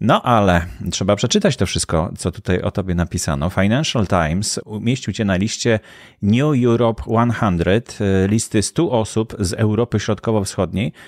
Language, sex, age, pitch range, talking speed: Polish, male, 30-49, 100-120 Hz, 140 wpm